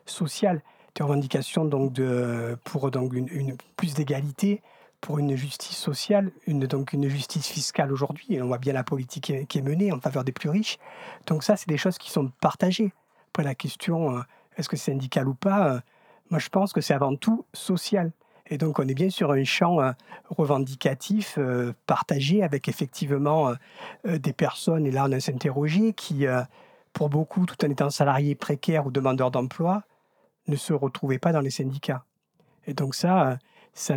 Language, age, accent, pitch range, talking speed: French, 50-69, French, 135-175 Hz, 180 wpm